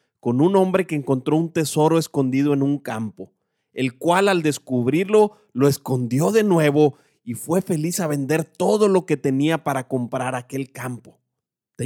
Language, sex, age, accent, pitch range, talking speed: Spanish, male, 30-49, Mexican, 125-175 Hz, 165 wpm